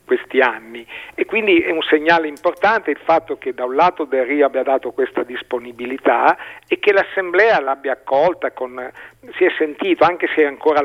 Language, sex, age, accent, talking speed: Italian, male, 50-69, native, 175 wpm